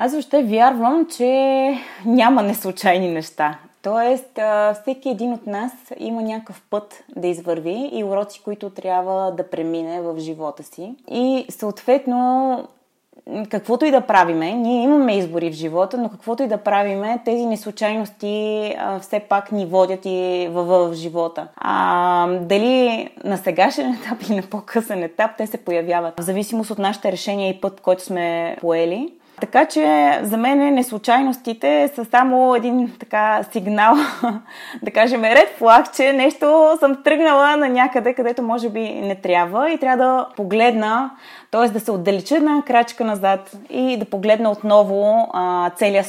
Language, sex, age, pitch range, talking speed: Bulgarian, female, 20-39, 185-245 Hz, 150 wpm